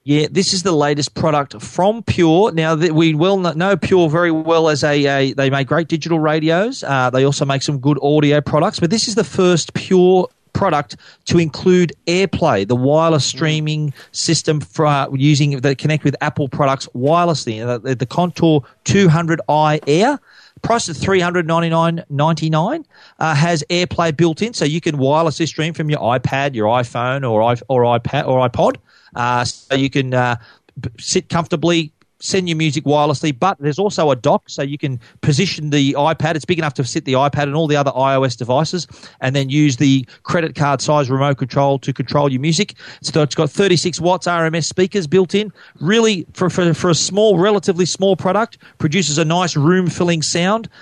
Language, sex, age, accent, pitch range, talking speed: English, male, 40-59, Australian, 140-175 Hz, 180 wpm